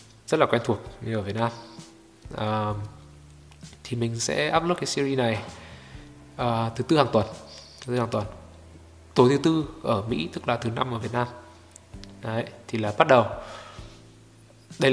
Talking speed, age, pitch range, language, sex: 175 wpm, 20-39, 105-125 Hz, Vietnamese, male